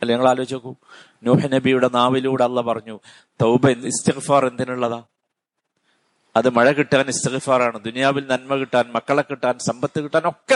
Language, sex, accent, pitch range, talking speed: Malayalam, male, native, 105-130 Hz, 125 wpm